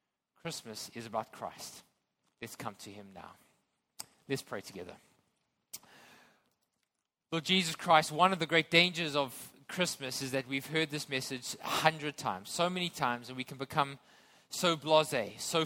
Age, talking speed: 20-39, 155 wpm